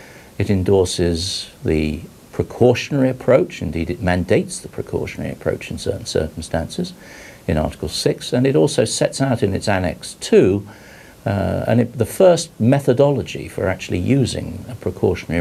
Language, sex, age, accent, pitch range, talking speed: English, male, 50-69, British, 85-120 Hz, 145 wpm